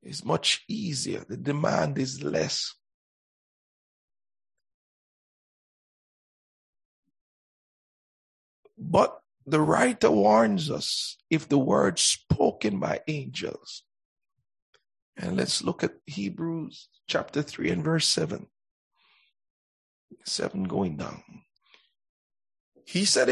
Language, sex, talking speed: English, male, 85 wpm